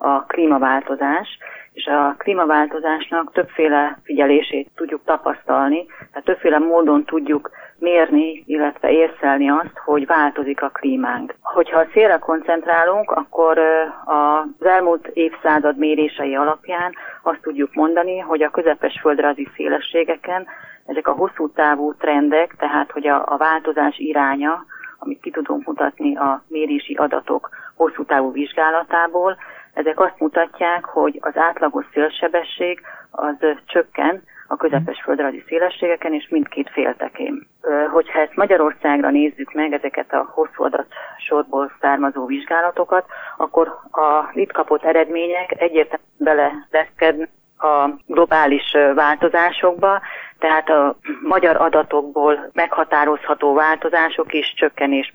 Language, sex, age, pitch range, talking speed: Hungarian, female, 30-49, 150-170 Hz, 110 wpm